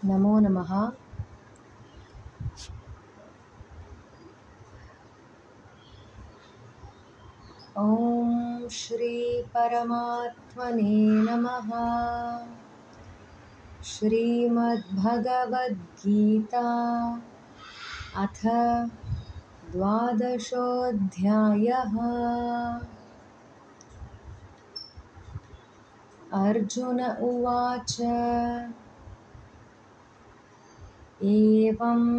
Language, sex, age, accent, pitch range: Hindi, female, 30-49, native, 195-235 Hz